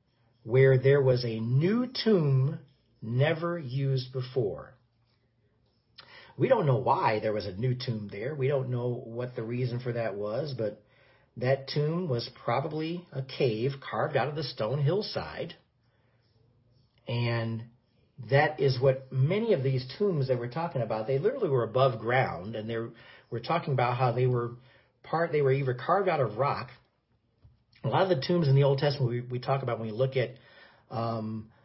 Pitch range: 115-135 Hz